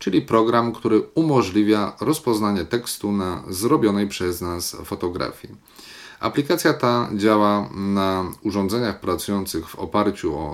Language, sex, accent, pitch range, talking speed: Polish, male, native, 95-115 Hz, 115 wpm